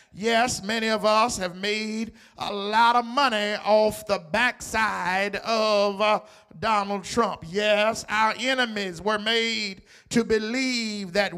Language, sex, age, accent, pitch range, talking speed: English, male, 50-69, American, 210-255 Hz, 130 wpm